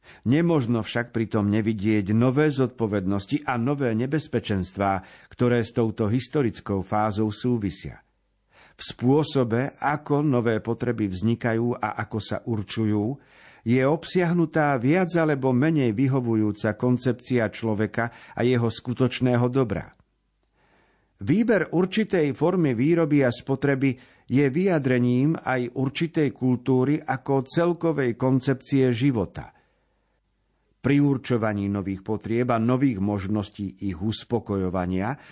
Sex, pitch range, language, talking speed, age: male, 110-140 Hz, Slovak, 105 wpm, 50-69